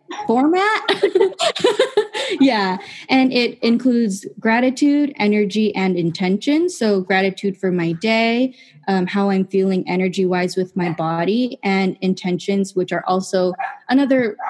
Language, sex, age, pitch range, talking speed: English, female, 10-29, 180-225 Hz, 120 wpm